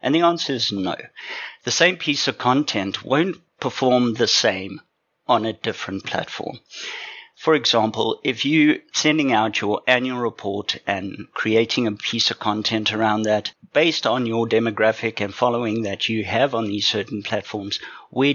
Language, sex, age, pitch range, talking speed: English, male, 50-69, 105-130 Hz, 160 wpm